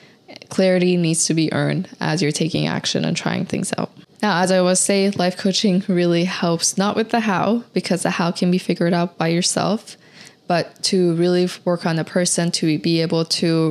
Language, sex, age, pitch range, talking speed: English, female, 20-39, 160-185 Hz, 200 wpm